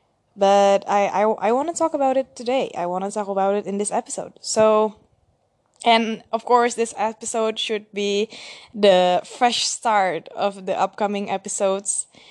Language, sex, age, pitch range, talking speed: Indonesian, female, 20-39, 195-235 Hz, 165 wpm